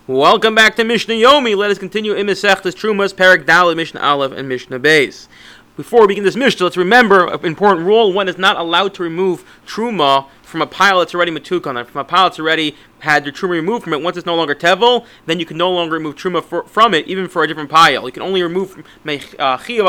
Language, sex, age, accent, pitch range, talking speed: English, male, 30-49, American, 170-220 Hz, 225 wpm